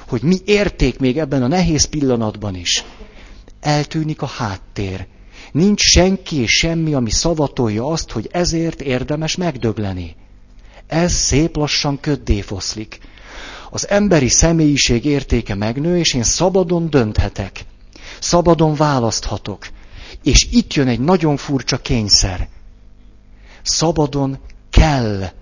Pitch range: 100-150 Hz